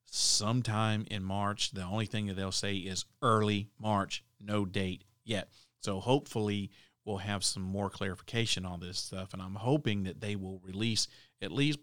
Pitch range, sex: 100-120 Hz, male